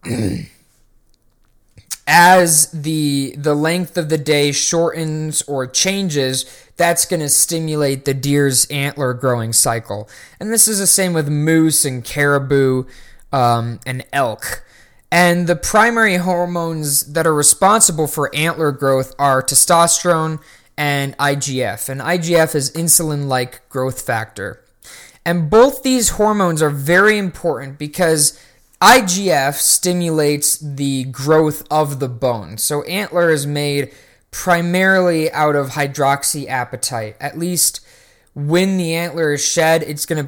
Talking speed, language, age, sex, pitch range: 125 wpm, English, 20-39, male, 130-165 Hz